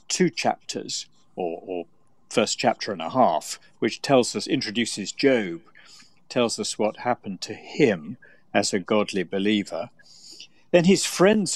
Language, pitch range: English, 105-140 Hz